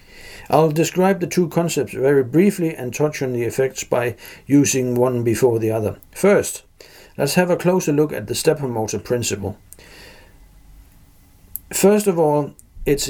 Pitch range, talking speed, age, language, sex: 110-150 Hz, 150 wpm, 60-79, English, male